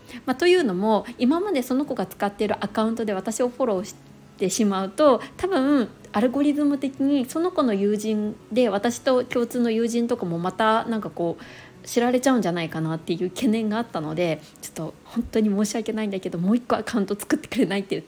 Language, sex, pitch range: Japanese, female, 190-255 Hz